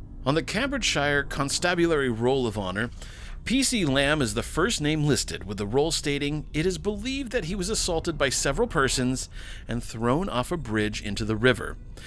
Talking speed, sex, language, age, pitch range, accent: 180 wpm, male, English, 40-59, 110-155 Hz, American